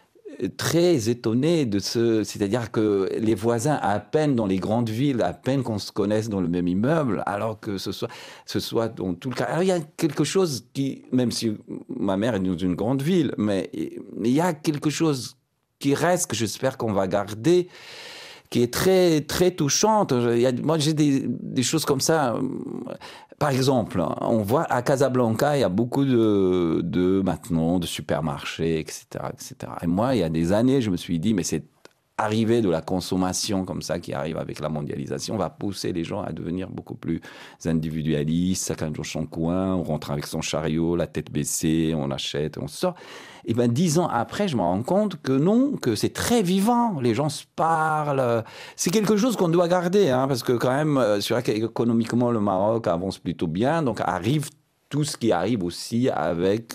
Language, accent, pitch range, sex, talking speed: French, French, 90-150 Hz, male, 195 wpm